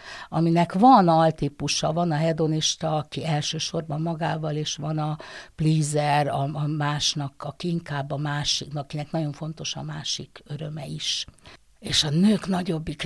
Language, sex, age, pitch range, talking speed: Hungarian, female, 60-79, 150-180 Hz, 135 wpm